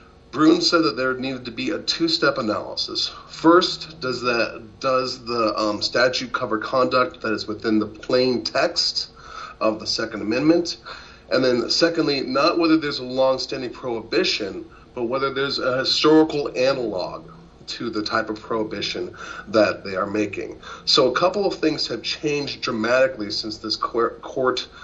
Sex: male